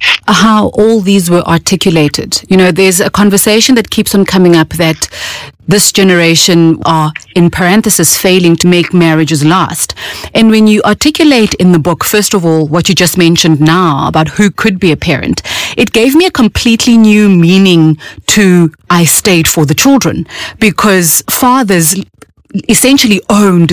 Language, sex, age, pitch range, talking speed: English, female, 30-49, 175-230 Hz, 160 wpm